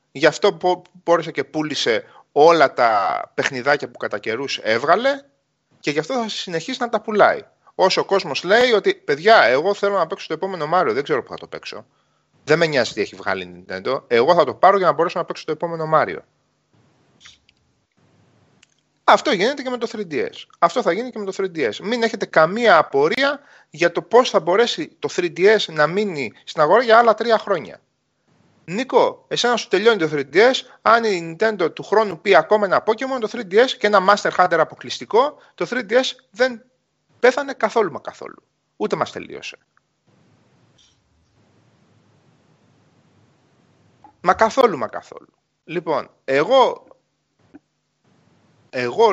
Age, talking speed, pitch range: 30-49, 160 wpm, 175-255 Hz